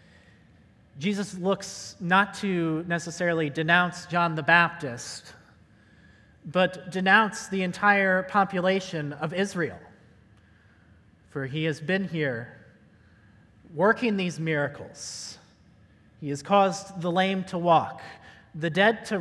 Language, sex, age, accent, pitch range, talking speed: English, male, 30-49, American, 125-195 Hz, 105 wpm